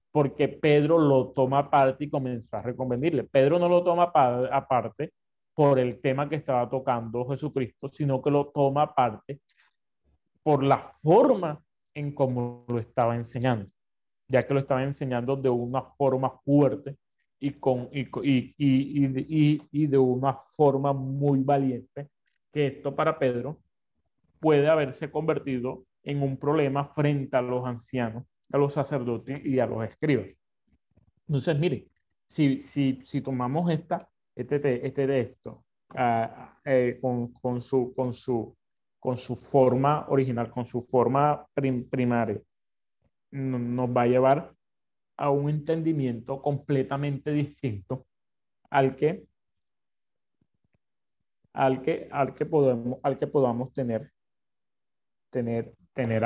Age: 30-49